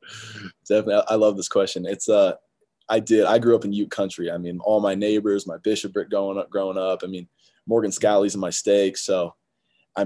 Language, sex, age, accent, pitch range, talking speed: English, male, 20-39, American, 90-105 Hz, 215 wpm